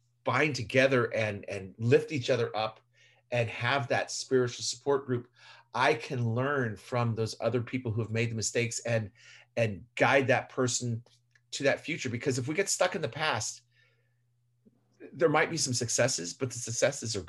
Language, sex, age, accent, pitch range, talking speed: English, male, 40-59, American, 115-130 Hz, 175 wpm